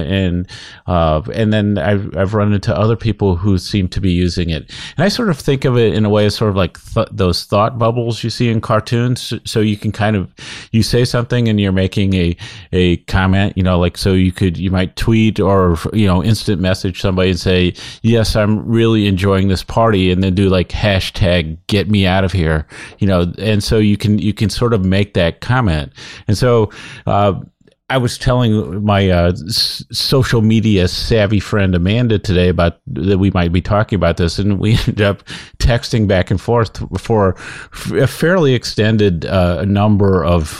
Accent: American